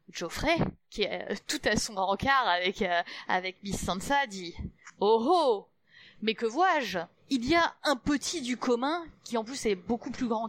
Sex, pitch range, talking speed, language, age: female, 180-245 Hz, 185 wpm, French, 30-49